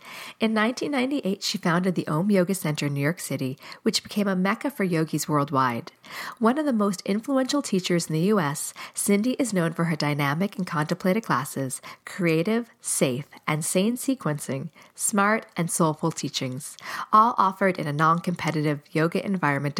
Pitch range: 155-210 Hz